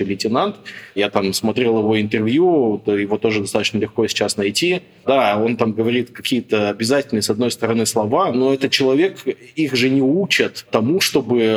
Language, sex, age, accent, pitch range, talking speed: Russian, male, 20-39, native, 110-135 Hz, 160 wpm